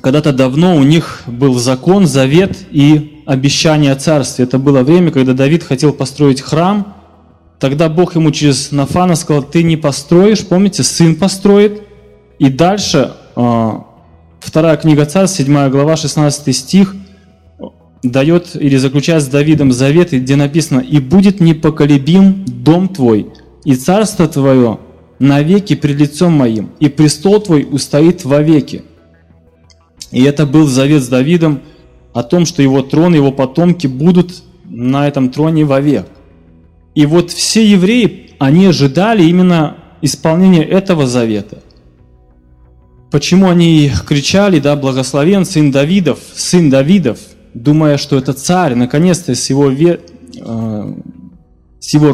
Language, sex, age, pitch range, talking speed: Russian, male, 20-39, 130-170 Hz, 130 wpm